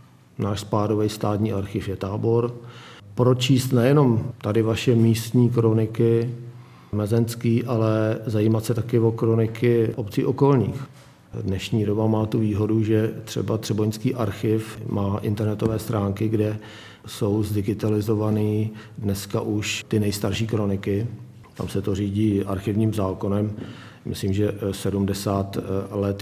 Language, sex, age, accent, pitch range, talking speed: Czech, male, 40-59, native, 105-120 Hz, 115 wpm